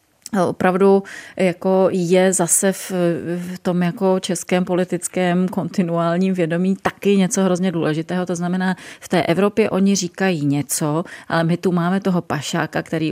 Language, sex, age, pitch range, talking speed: Czech, female, 30-49, 165-190 Hz, 130 wpm